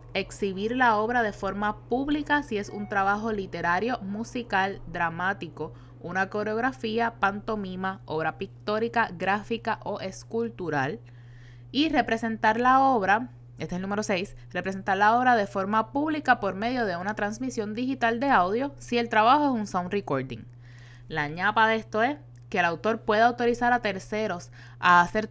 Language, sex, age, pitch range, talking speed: Spanish, female, 20-39, 155-230 Hz, 155 wpm